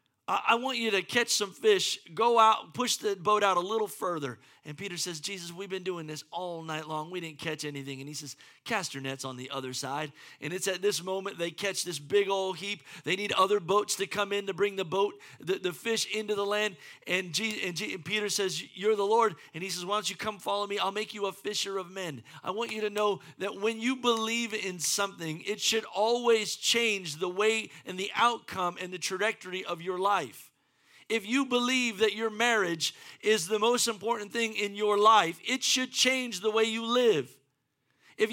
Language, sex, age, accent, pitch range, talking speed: English, male, 40-59, American, 190-235 Hz, 220 wpm